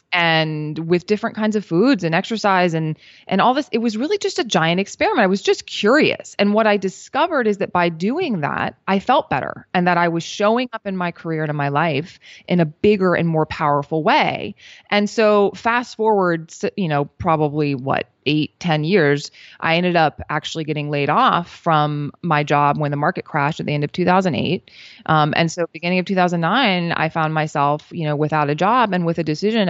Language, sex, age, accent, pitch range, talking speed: English, female, 20-39, American, 150-185 Hz, 210 wpm